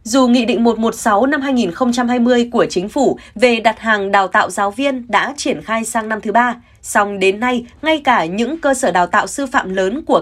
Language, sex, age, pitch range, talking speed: Vietnamese, female, 20-39, 195-260 Hz, 215 wpm